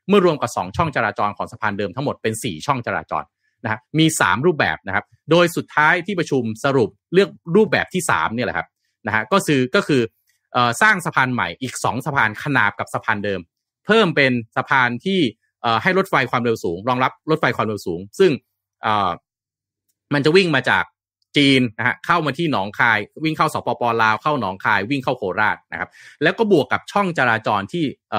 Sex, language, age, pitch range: male, Thai, 30-49, 115-160 Hz